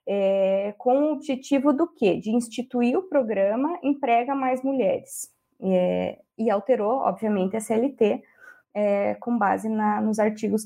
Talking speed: 120 wpm